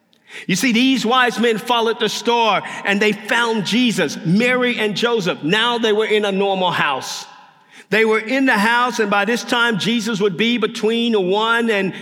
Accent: American